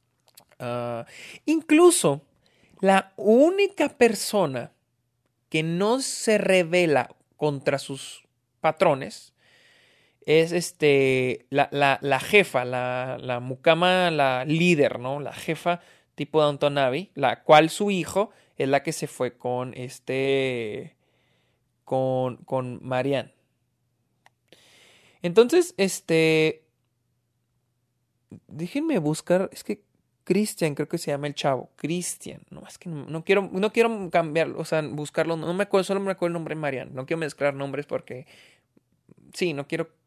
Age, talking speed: 30-49, 130 wpm